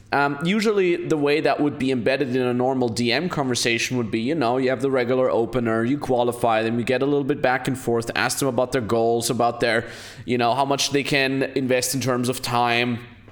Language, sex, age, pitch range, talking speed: English, male, 20-39, 115-135 Hz, 230 wpm